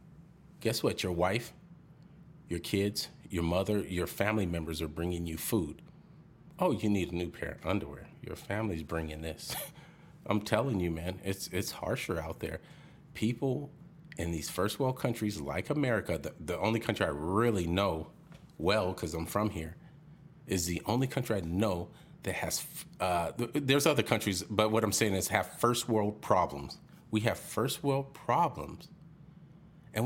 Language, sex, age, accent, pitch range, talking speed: English, male, 40-59, American, 95-150 Hz, 165 wpm